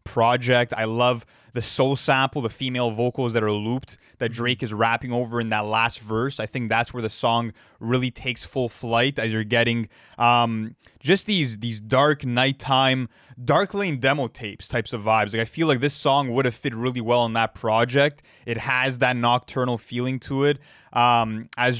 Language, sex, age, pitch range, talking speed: English, male, 20-39, 115-140 Hz, 195 wpm